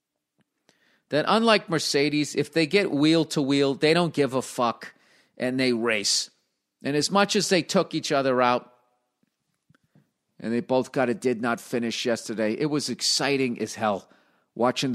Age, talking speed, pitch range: 50-69, 155 wpm, 115-155 Hz